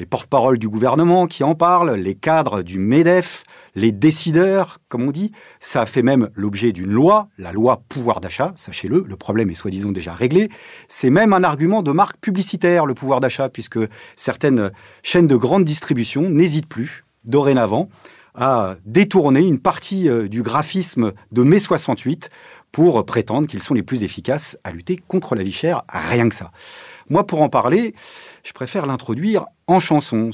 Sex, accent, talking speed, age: male, French, 170 wpm, 40-59